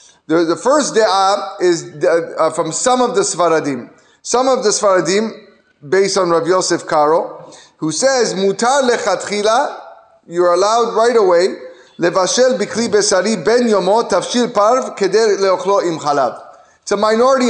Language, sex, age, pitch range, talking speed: English, male, 30-49, 175-245 Hz, 125 wpm